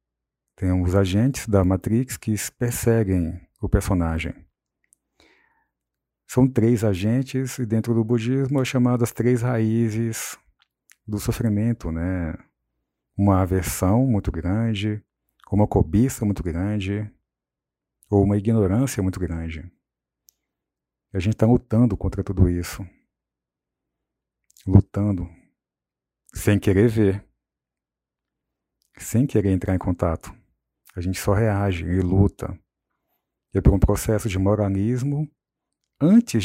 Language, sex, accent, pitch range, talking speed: English, male, Brazilian, 90-115 Hz, 110 wpm